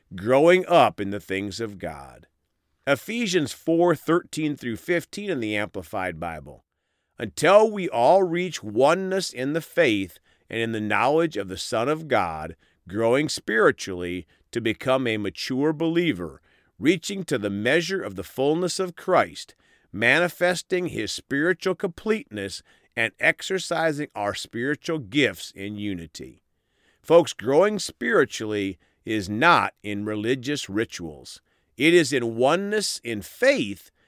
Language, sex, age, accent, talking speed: English, male, 40-59, American, 125 wpm